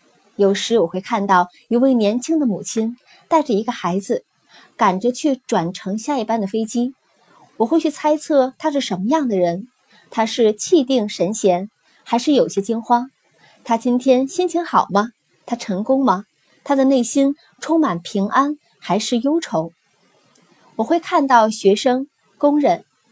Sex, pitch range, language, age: female, 195-270 Hz, Chinese, 20-39